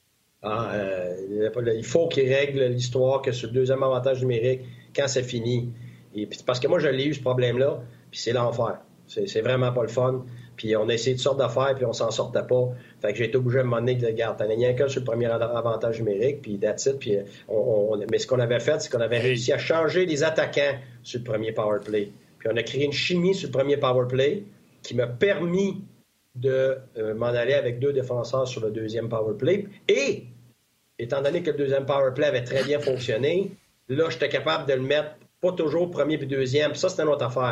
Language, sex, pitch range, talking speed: French, male, 120-150 Hz, 225 wpm